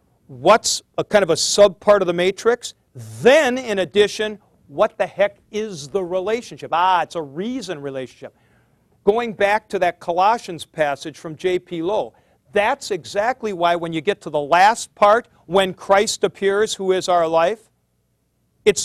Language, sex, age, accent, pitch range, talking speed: English, male, 50-69, American, 155-205 Hz, 160 wpm